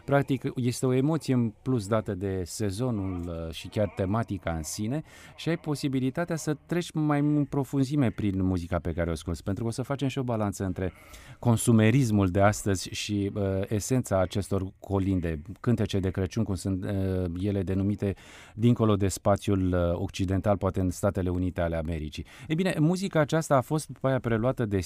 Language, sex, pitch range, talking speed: Romanian, male, 95-135 Hz, 165 wpm